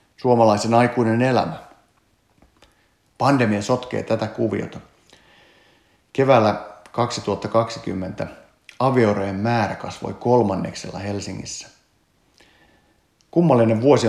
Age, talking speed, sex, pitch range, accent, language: 50-69, 70 wpm, male, 100-125 Hz, native, Finnish